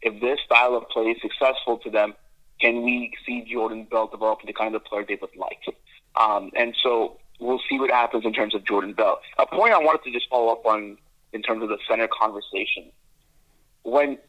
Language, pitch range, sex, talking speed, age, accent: English, 115-140 Hz, male, 210 wpm, 30-49, American